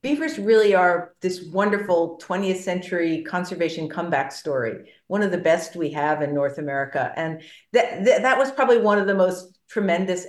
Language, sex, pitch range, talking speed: English, female, 155-200 Hz, 175 wpm